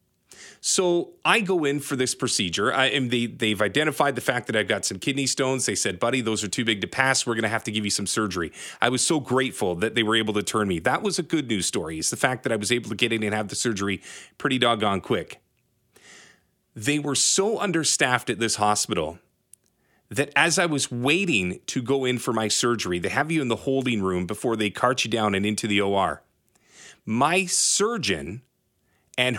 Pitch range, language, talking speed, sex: 115-160 Hz, English, 220 wpm, male